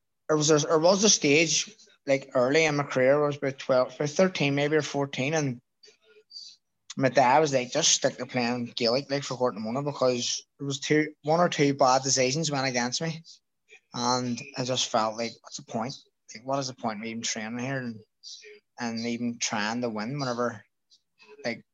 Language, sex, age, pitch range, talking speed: English, male, 20-39, 120-145 Hz, 195 wpm